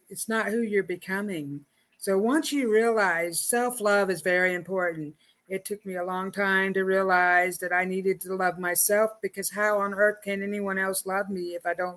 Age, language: 50-69, English